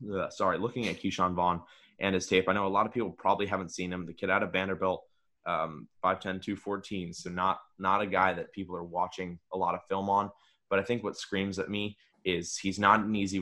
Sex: male